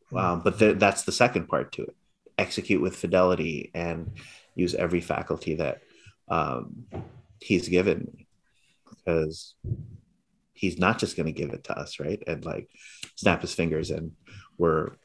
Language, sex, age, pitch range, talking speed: English, male, 30-49, 80-90 Hz, 155 wpm